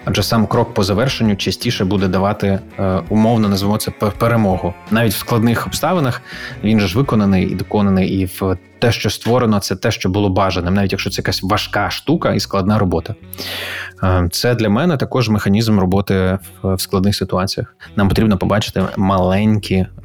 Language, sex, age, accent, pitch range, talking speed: Ukrainian, male, 20-39, native, 95-110 Hz, 160 wpm